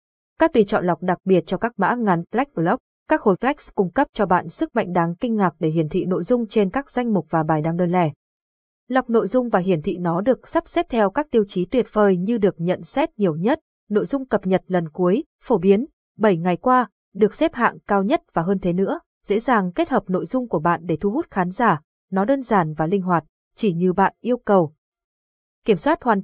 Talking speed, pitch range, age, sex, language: 240 wpm, 185-245 Hz, 20-39, female, Vietnamese